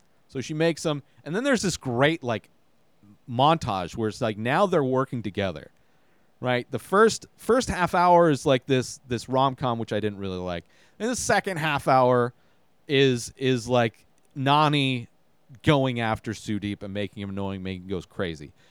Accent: American